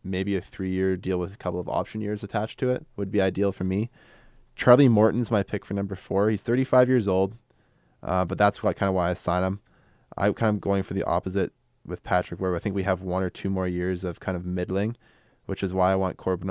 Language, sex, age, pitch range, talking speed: English, male, 20-39, 95-105 Hz, 245 wpm